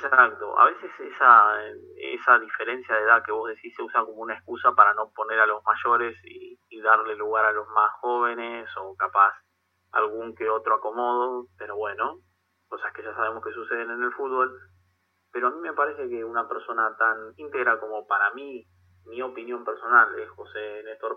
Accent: Argentinian